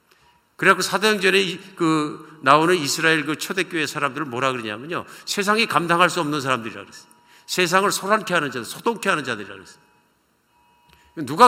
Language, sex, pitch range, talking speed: English, male, 115-170 Hz, 125 wpm